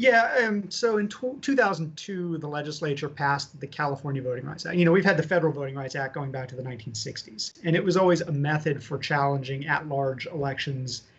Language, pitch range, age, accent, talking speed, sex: English, 140-165 Hz, 30-49, American, 200 wpm, male